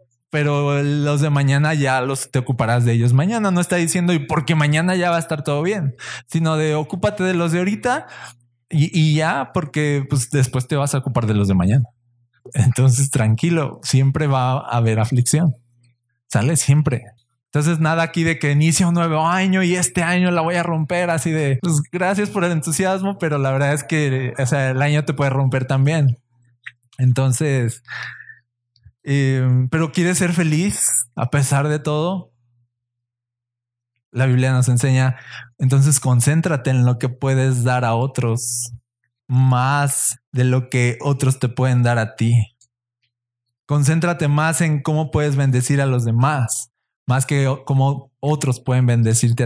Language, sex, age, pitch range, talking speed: Spanish, male, 20-39, 120-155 Hz, 165 wpm